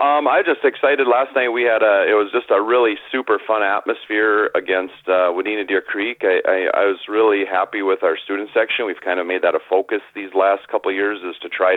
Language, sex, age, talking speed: English, male, 40-59, 240 wpm